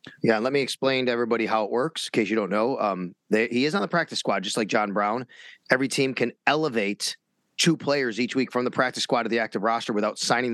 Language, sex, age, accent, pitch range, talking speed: English, male, 30-49, American, 115-160 Hz, 250 wpm